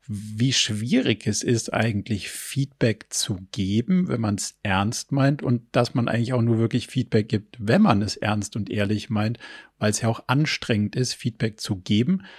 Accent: German